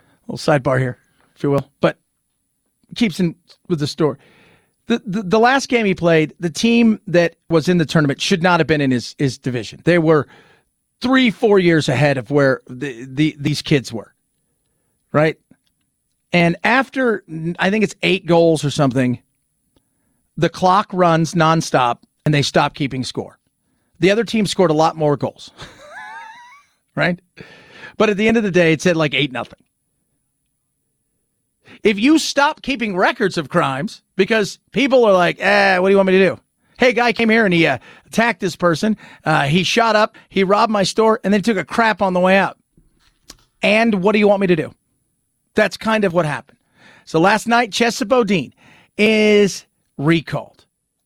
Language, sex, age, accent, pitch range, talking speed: English, male, 40-59, American, 160-225 Hz, 180 wpm